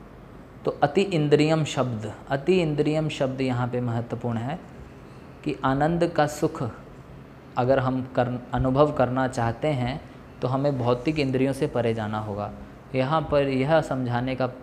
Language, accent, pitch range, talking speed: Hindi, native, 125-150 Hz, 145 wpm